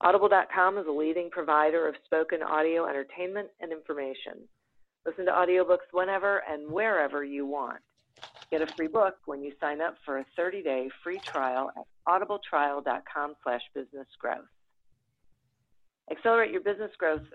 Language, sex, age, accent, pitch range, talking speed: English, female, 40-59, American, 140-180 Hz, 140 wpm